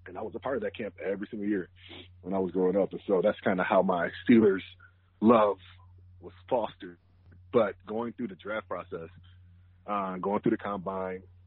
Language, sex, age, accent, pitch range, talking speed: English, male, 30-49, American, 90-100 Hz, 200 wpm